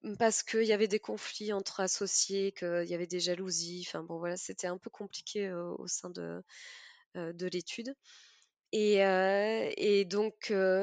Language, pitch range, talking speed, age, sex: French, 180-225 Hz, 170 wpm, 20-39, female